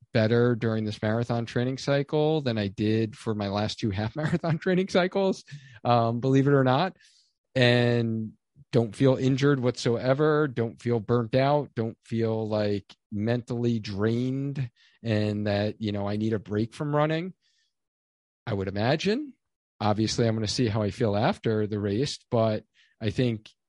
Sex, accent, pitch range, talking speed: male, American, 110-140 Hz, 160 wpm